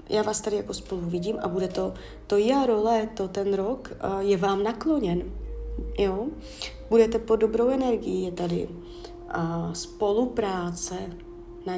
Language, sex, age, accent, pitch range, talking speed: Czech, female, 30-49, native, 175-225 Hz, 145 wpm